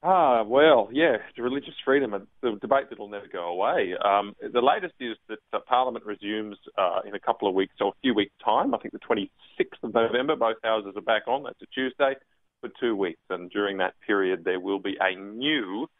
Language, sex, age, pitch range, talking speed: English, male, 30-49, 100-135 Hz, 220 wpm